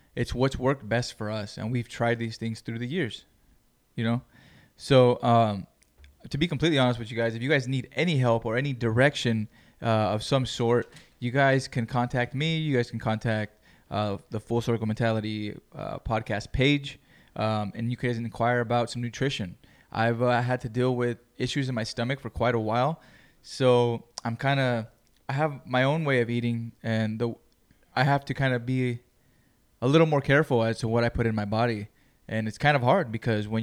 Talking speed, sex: 205 wpm, male